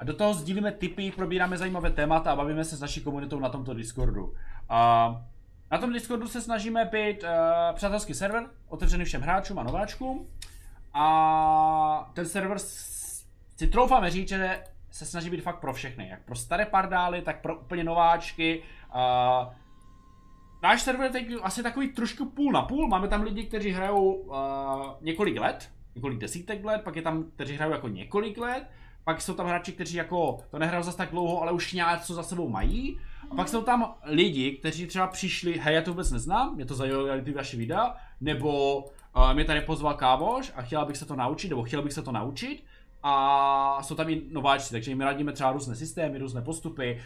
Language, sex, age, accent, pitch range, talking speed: Czech, male, 20-39, native, 135-190 Hz, 195 wpm